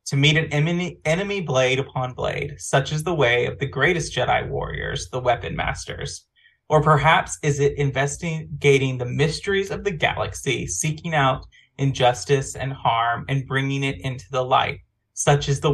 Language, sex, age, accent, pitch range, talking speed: English, male, 30-49, American, 125-150 Hz, 165 wpm